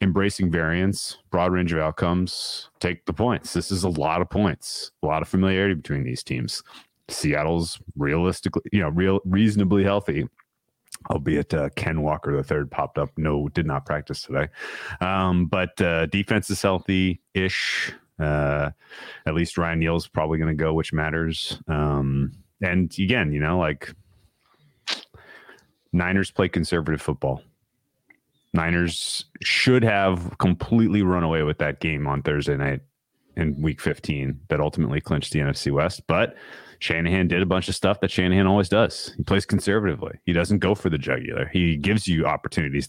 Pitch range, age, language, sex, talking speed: 80-95 Hz, 30-49, English, male, 160 wpm